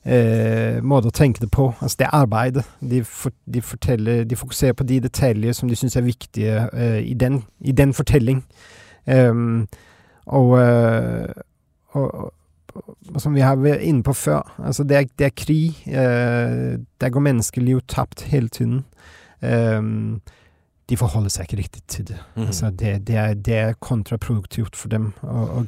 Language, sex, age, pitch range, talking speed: Danish, male, 30-49, 110-130 Hz, 165 wpm